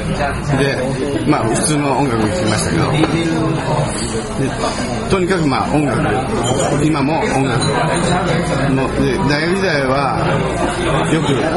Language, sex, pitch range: Japanese, male, 130-155 Hz